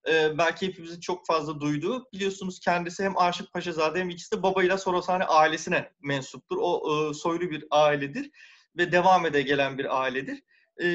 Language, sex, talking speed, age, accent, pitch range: Turkish, male, 155 wpm, 30-49, native, 155-205 Hz